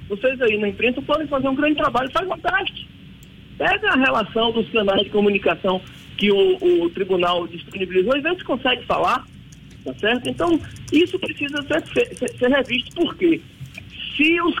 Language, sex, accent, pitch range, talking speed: Portuguese, male, Brazilian, 210-305 Hz, 170 wpm